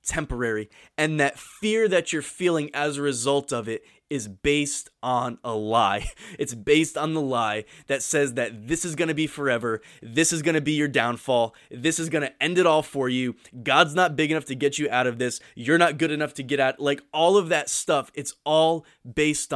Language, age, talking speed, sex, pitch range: English, 20-39, 220 wpm, male, 135-175 Hz